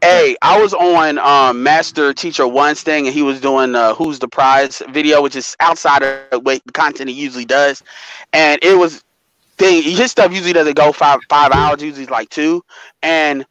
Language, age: English, 20-39